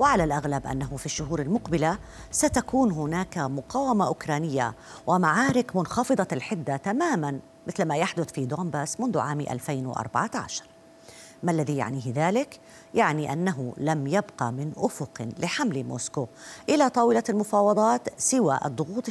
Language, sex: Arabic, female